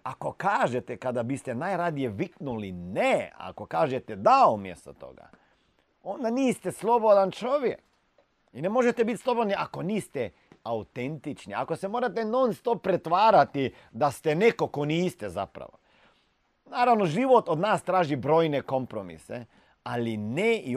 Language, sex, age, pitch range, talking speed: Croatian, male, 40-59, 115-180 Hz, 135 wpm